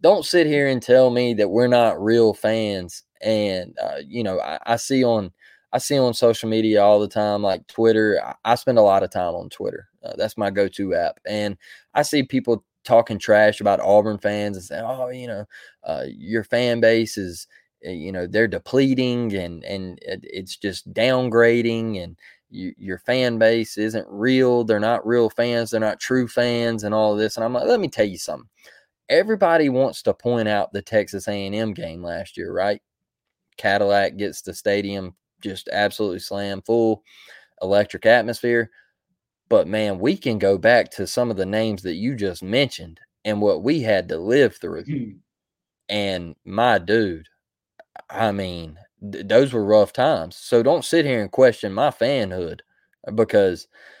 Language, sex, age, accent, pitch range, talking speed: English, male, 20-39, American, 100-120 Hz, 180 wpm